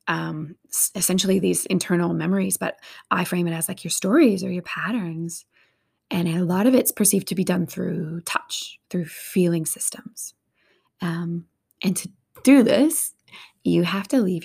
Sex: female